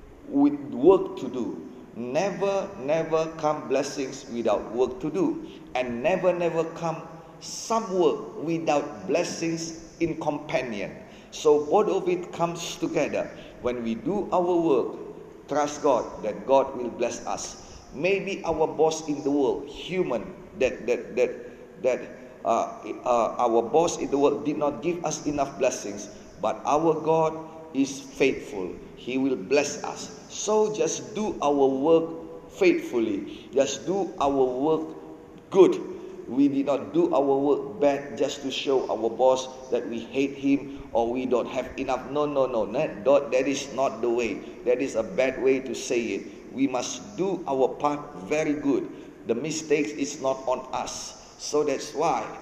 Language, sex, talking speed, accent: Indonesian, male, 155 wpm, Malaysian